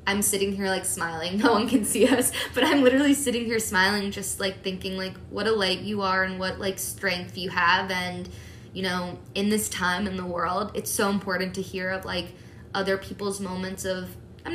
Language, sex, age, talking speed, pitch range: English, female, 20-39, 215 wpm, 185-210 Hz